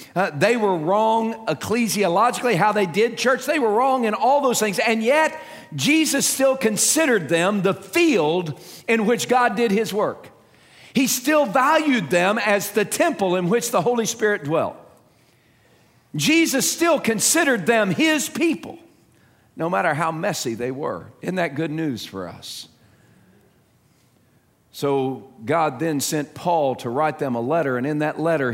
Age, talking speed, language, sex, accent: 50-69, 160 wpm, English, male, American